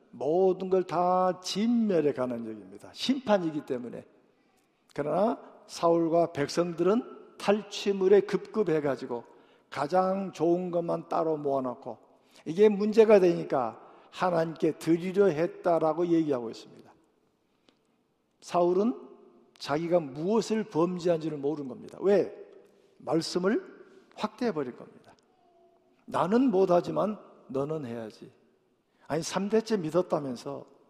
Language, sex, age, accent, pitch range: Korean, male, 50-69, native, 150-205 Hz